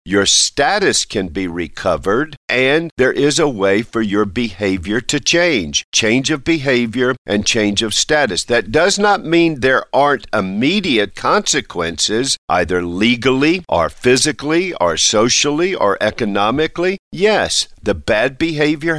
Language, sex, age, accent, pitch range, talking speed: English, male, 50-69, American, 110-155 Hz, 135 wpm